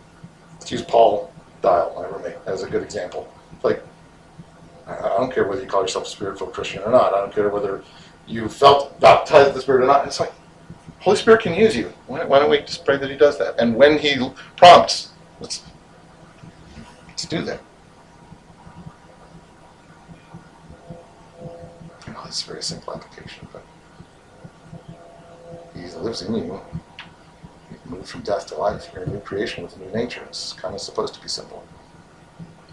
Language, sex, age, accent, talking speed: English, male, 50-69, American, 165 wpm